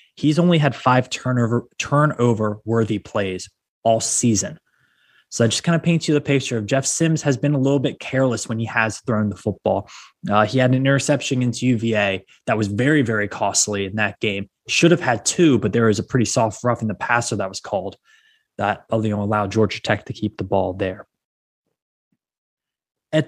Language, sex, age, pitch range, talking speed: English, male, 20-39, 110-140 Hz, 200 wpm